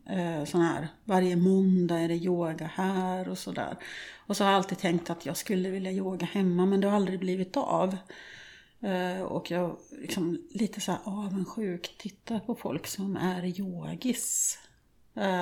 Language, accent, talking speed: Swedish, native, 160 wpm